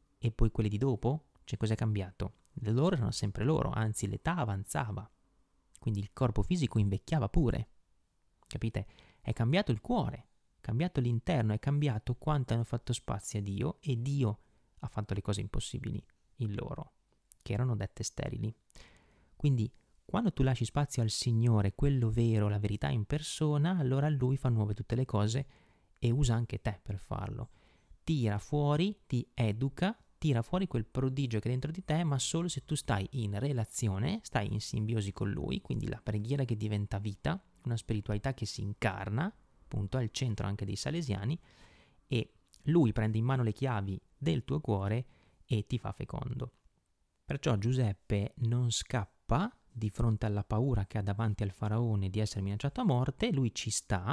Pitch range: 105-135 Hz